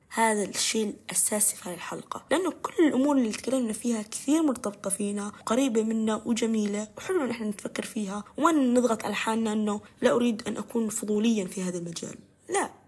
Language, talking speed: Arabic, 170 wpm